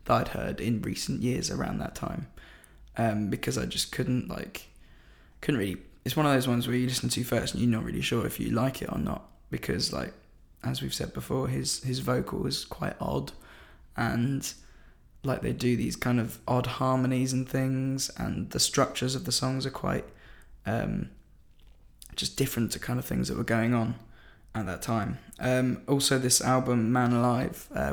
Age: 20-39